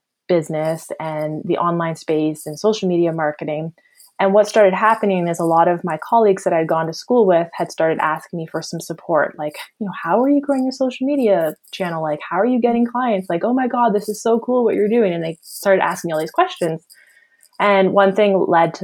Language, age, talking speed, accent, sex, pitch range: English, 20-39, 235 wpm, American, female, 160-200 Hz